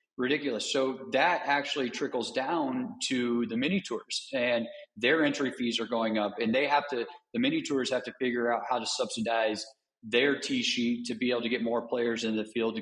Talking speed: 210 wpm